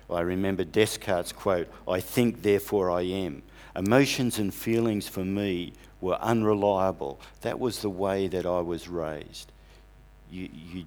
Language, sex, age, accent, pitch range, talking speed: English, male, 50-69, Australian, 80-100 Hz, 145 wpm